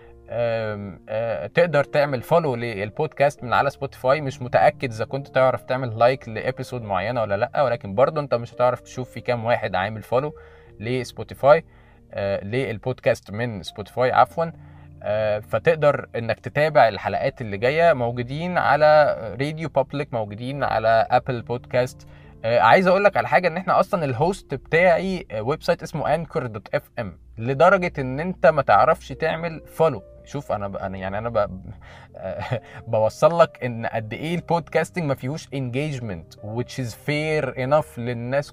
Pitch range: 115-150 Hz